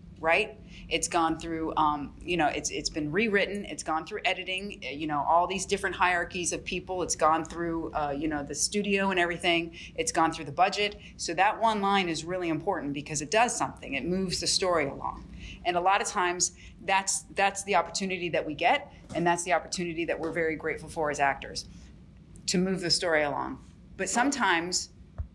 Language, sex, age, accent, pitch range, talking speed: English, female, 30-49, American, 155-180 Hz, 200 wpm